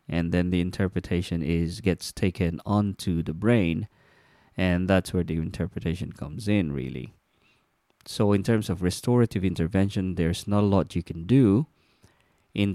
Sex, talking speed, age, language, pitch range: male, 150 wpm, 20-39, English, 85-100 Hz